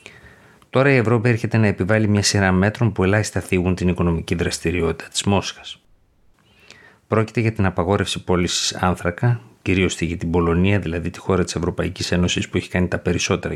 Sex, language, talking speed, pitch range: male, Greek, 170 wpm, 90-105 Hz